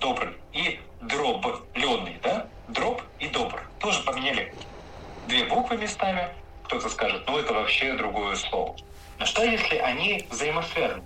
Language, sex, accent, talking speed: Russian, male, native, 135 wpm